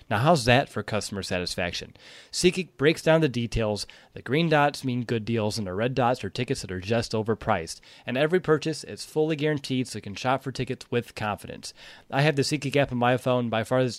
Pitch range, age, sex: 115-140 Hz, 20-39, male